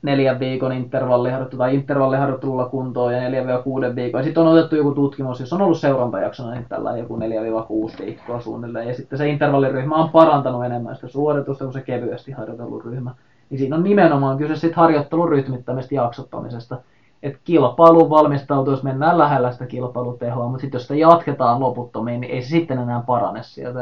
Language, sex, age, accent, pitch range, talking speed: Finnish, male, 20-39, native, 125-150 Hz, 165 wpm